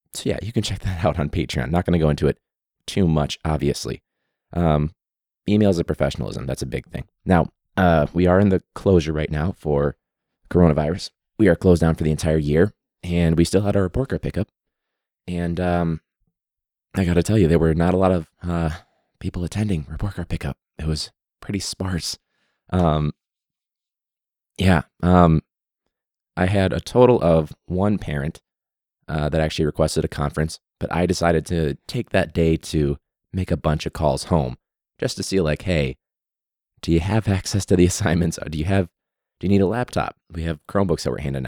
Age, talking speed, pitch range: 20-39, 190 wpm, 75-90 Hz